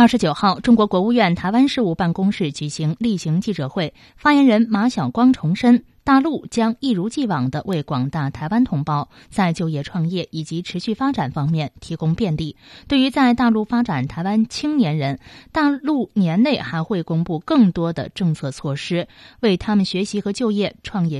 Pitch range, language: 160-240 Hz, Chinese